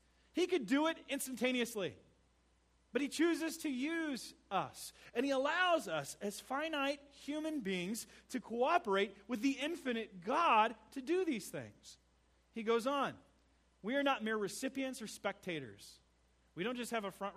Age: 40-59